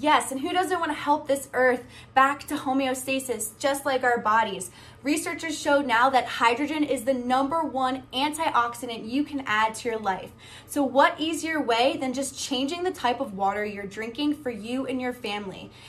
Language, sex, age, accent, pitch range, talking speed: English, female, 10-29, American, 205-280 Hz, 185 wpm